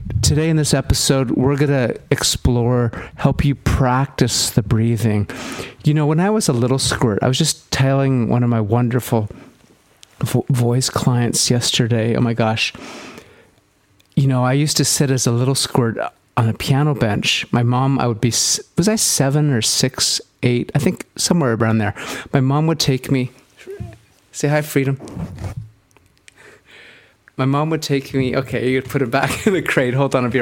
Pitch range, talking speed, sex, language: 115-145 Hz, 180 wpm, male, English